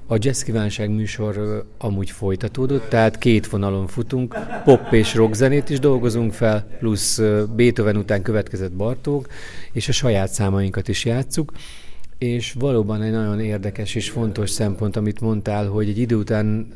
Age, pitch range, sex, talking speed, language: 40-59, 100-115 Hz, male, 145 wpm, Hungarian